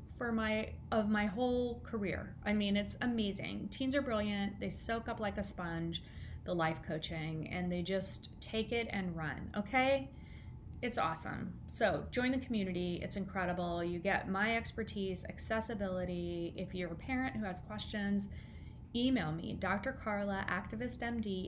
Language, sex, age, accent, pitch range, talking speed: English, female, 30-49, American, 180-230 Hz, 150 wpm